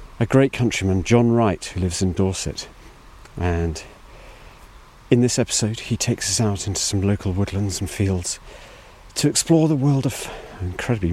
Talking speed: 155 wpm